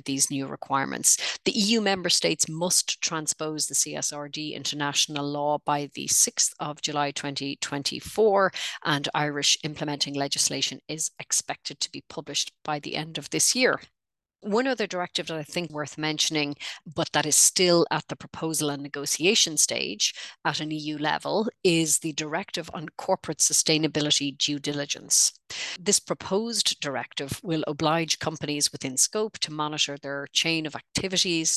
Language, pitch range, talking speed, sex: English, 145-165 Hz, 150 wpm, female